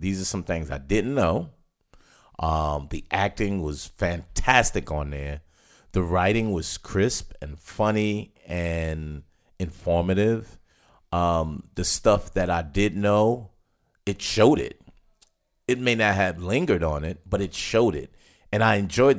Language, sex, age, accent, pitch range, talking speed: English, male, 40-59, American, 85-100 Hz, 145 wpm